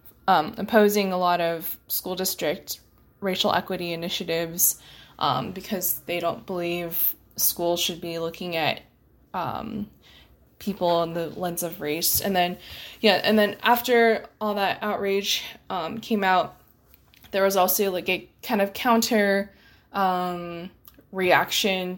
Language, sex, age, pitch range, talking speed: English, female, 20-39, 175-200 Hz, 130 wpm